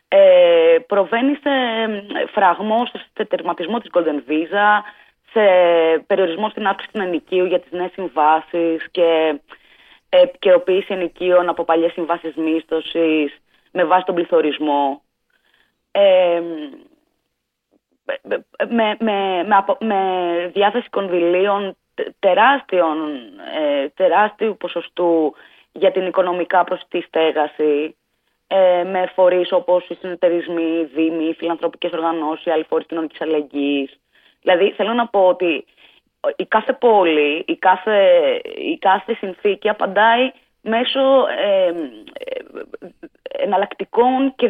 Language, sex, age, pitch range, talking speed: Greek, female, 20-39, 165-220 Hz, 105 wpm